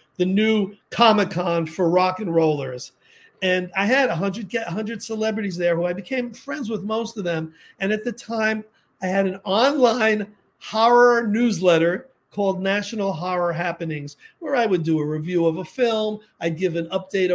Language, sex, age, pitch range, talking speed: English, male, 40-59, 180-225 Hz, 170 wpm